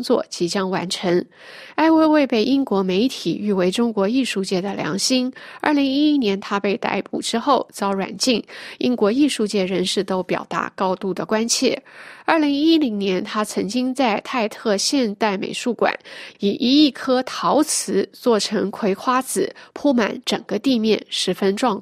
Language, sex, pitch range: Chinese, female, 195-255 Hz